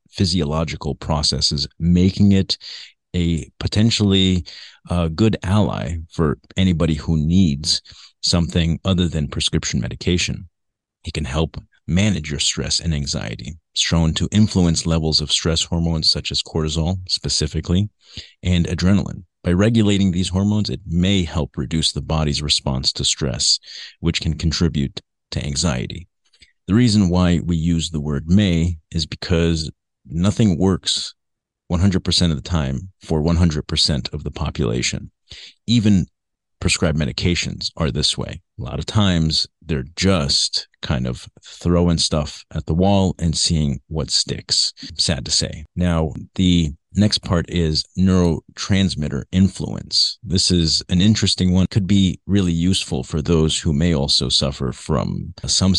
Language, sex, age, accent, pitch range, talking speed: English, male, 40-59, American, 80-95 Hz, 140 wpm